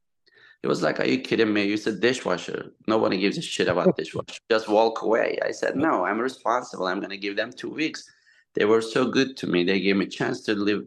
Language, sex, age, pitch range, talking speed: English, male, 20-39, 95-115 Hz, 235 wpm